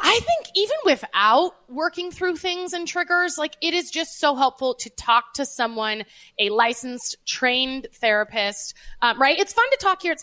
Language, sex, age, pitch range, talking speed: English, female, 20-39, 230-305 Hz, 180 wpm